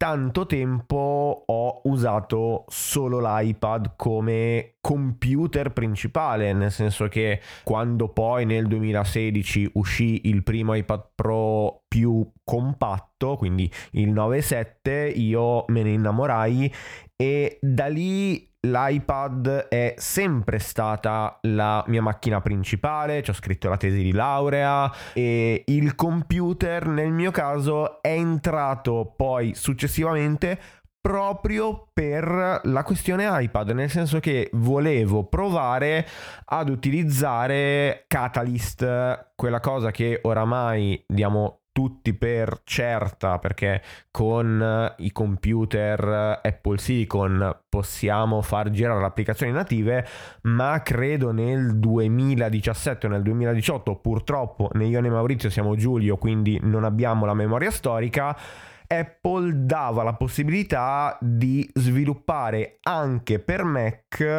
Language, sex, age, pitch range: Italian, male, 20-39, 110-140 Hz